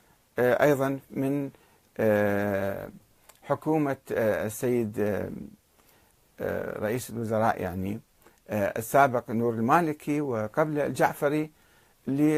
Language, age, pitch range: Arabic, 50-69, 110-155 Hz